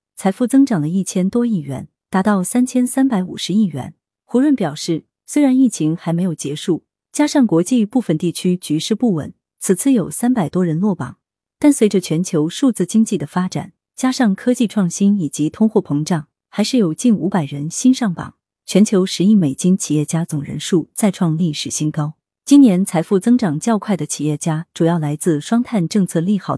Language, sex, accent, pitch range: Chinese, female, native, 155-220 Hz